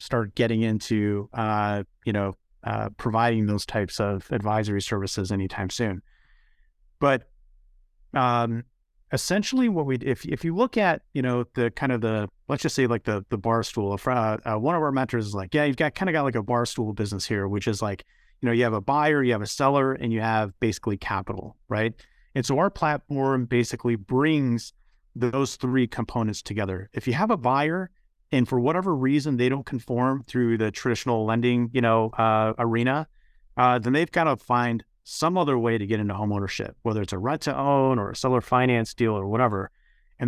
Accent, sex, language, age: American, male, English, 30-49